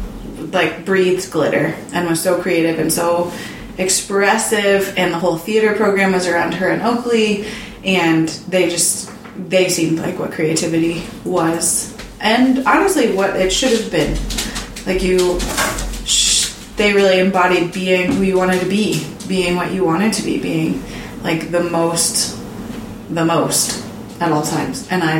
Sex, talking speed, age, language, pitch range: female, 155 wpm, 20-39, English, 170-220 Hz